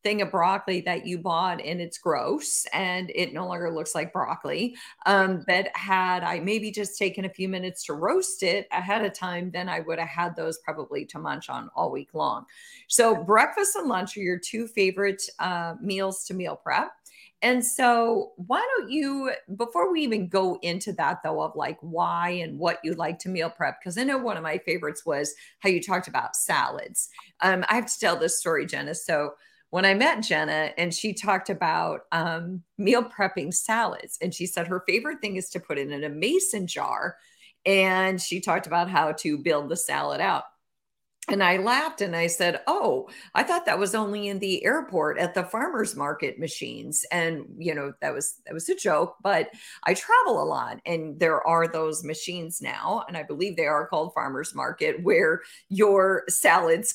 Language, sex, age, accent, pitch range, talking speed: English, female, 40-59, American, 170-220 Hz, 200 wpm